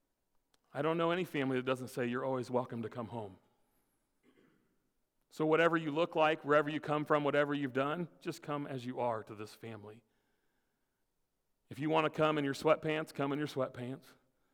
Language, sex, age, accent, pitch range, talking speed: English, male, 40-59, American, 125-150 Hz, 190 wpm